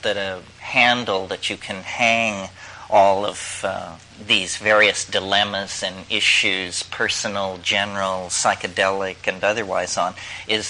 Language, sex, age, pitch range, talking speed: English, male, 40-59, 95-110 Hz, 120 wpm